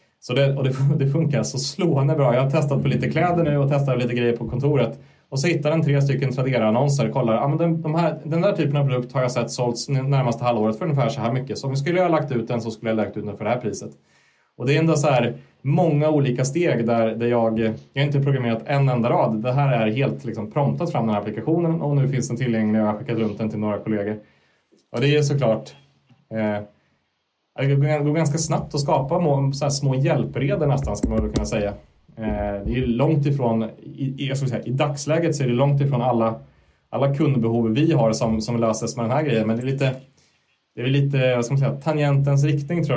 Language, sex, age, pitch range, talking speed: Swedish, male, 30-49, 110-145 Hz, 245 wpm